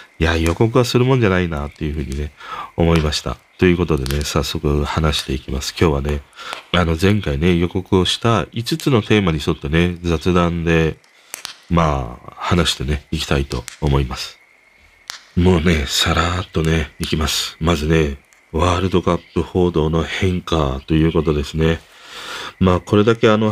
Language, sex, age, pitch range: Japanese, male, 40-59, 75-105 Hz